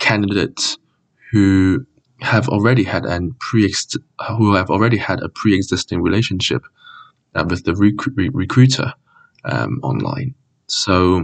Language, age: English, 20-39